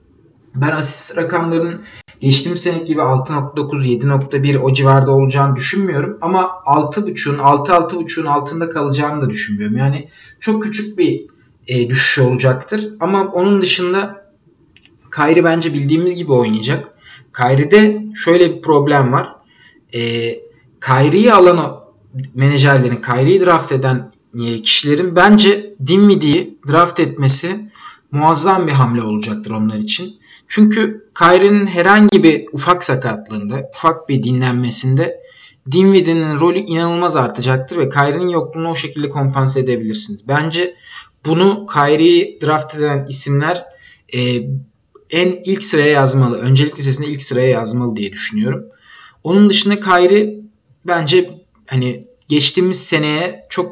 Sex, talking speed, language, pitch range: male, 120 wpm, Turkish, 135-180 Hz